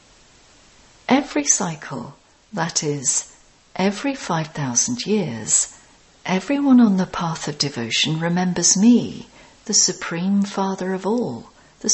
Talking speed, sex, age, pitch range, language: 105 wpm, female, 50-69, 165-230 Hz, English